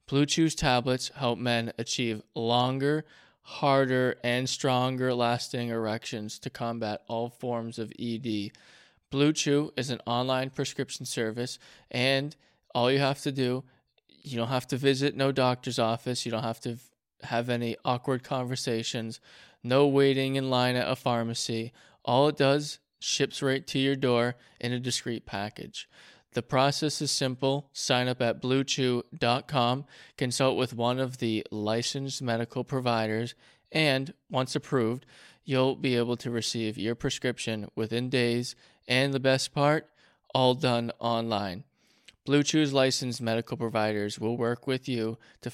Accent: American